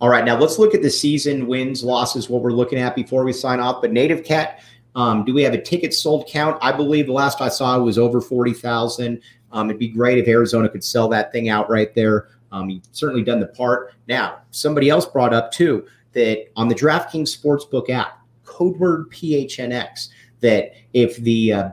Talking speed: 215 wpm